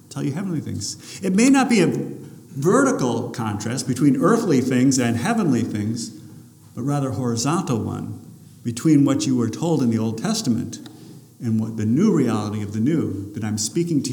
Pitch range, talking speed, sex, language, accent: 115-150 Hz, 180 wpm, male, English, American